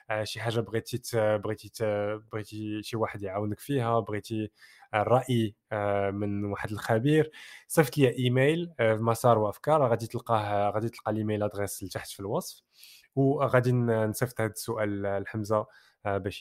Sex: male